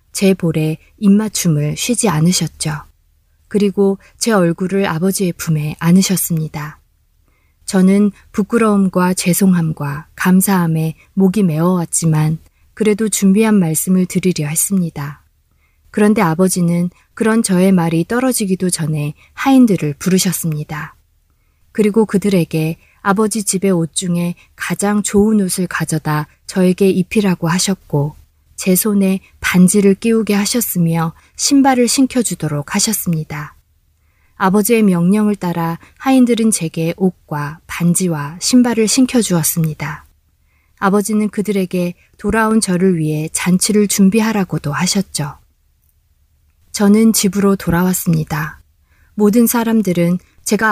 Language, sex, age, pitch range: Korean, female, 20-39, 155-205 Hz